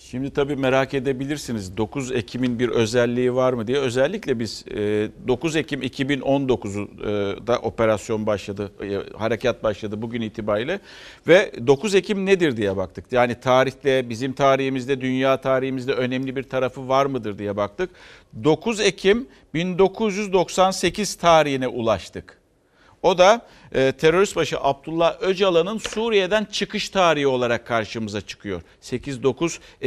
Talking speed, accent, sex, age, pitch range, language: 120 wpm, native, male, 50-69, 115-170 Hz, Turkish